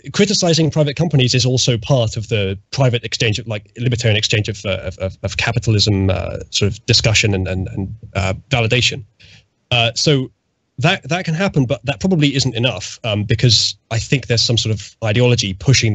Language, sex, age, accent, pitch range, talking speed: English, male, 20-39, British, 105-130 Hz, 185 wpm